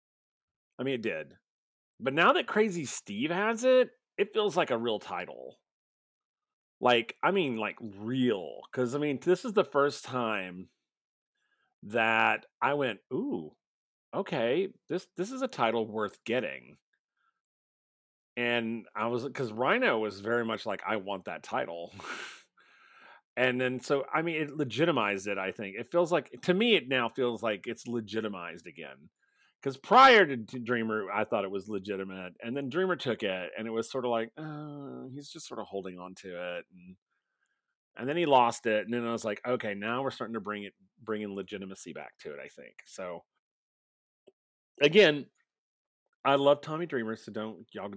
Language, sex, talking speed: English, male, 175 wpm